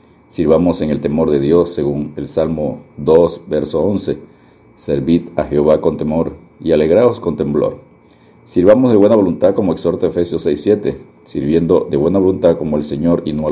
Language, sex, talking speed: Spanish, male, 180 wpm